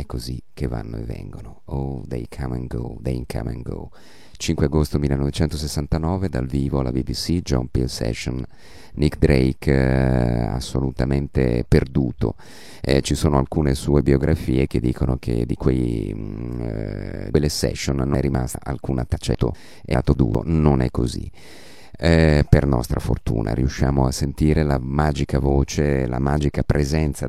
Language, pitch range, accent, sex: Italian, 65-80 Hz, native, male